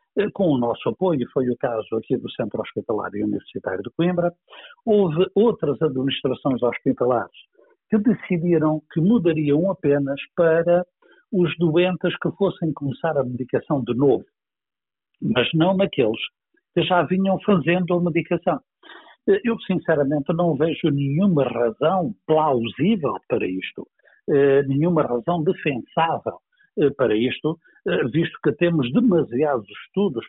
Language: Portuguese